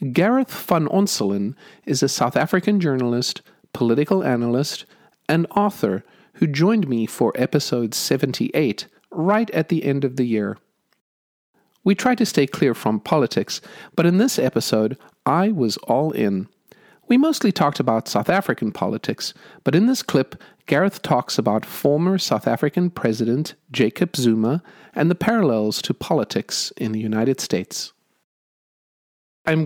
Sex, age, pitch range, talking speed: male, 50-69, 115-180 Hz, 140 wpm